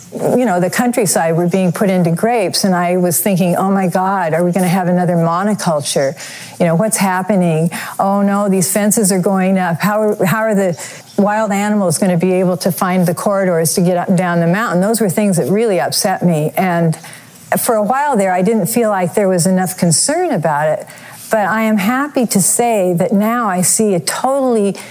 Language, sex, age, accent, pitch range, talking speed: English, female, 50-69, American, 170-210 Hz, 210 wpm